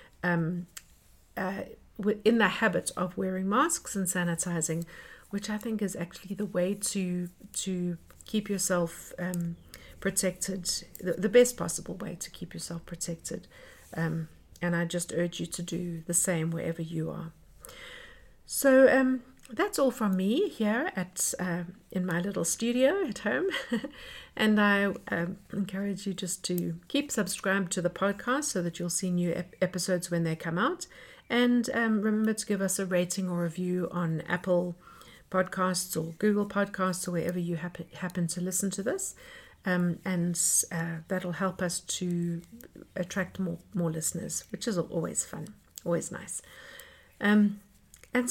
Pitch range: 175-215 Hz